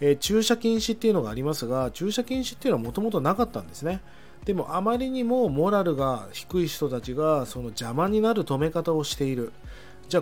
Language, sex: Japanese, male